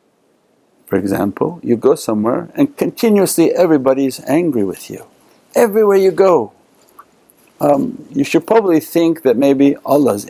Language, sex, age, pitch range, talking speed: English, male, 60-79, 135-170 Hz, 130 wpm